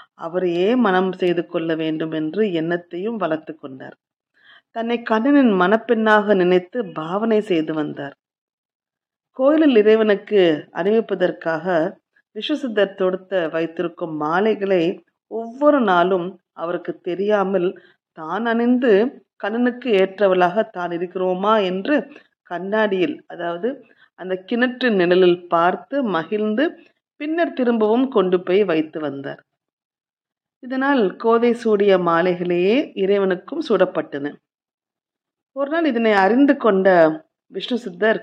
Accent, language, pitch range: native, Tamil, 175-230 Hz